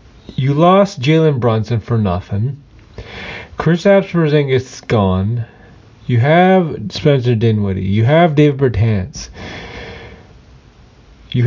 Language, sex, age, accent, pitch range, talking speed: English, male, 30-49, American, 105-130 Hz, 100 wpm